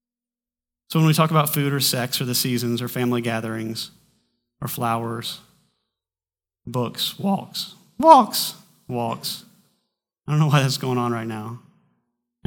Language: English